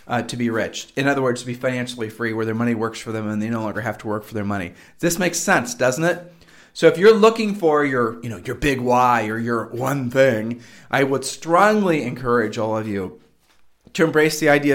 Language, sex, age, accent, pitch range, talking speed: English, male, 40-59, American, 125-155 Hz, 235 wpm